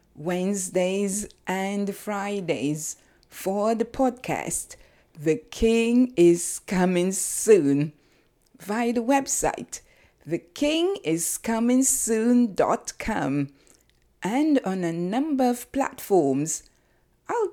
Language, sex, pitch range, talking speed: English, female, 180-245 Hz, 75 wpm